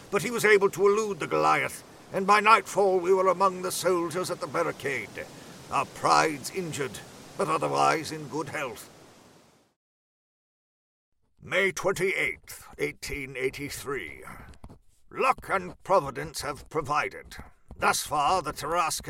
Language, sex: English, male